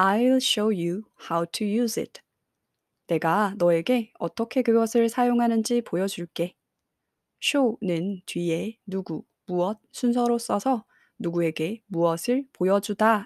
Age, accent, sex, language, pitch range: 20-39, native, female, Korean, 175-235 Hz